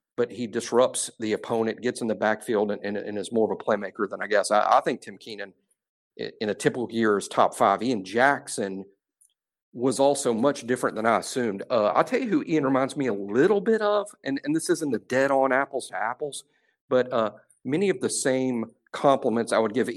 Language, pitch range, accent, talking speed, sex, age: English, 115-160 Hz, American, 215 wpm, male, 50-69